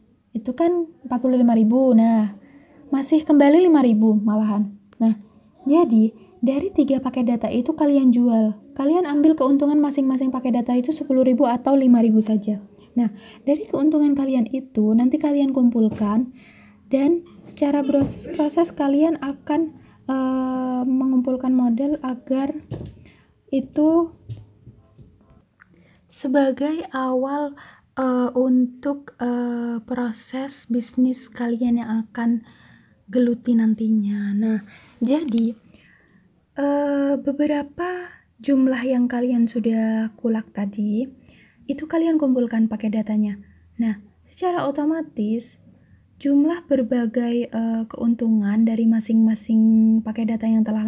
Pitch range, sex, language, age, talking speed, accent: 225-280 Hz, female, Indonesian, 20-39, 105 wpm, native